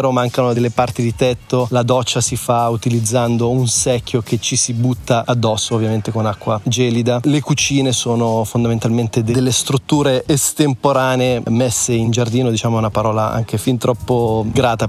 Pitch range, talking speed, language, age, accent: 115-135 Hz, 155 wpm, Italian, 30-49, native